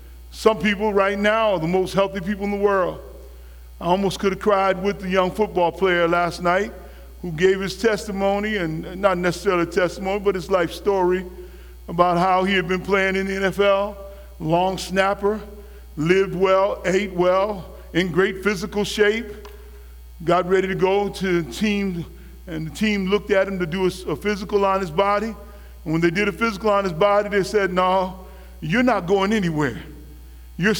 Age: 50-69